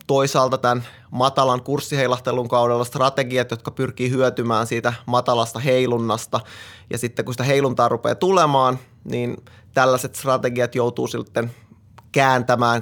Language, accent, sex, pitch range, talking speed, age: Finnish, native, male, 120-130 Hz, 115 wpm, 20-39